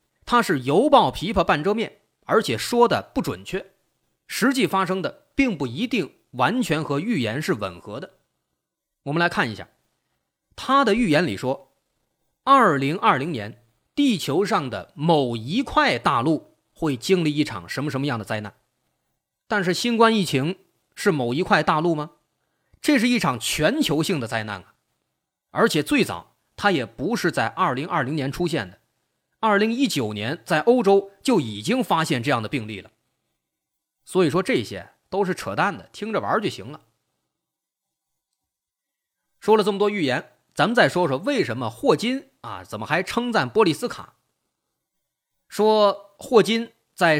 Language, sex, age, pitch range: Chinese, male, 30-49, 135-210 Hz